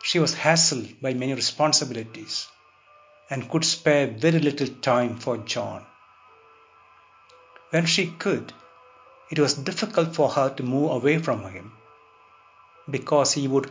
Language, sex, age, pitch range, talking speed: English, male, 60-79, 120-160 Hz, 130 wpm